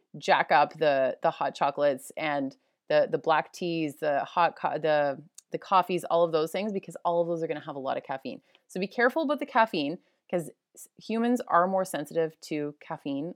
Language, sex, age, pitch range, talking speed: English, female, 30-49, 160-205 Hz, 200 wpm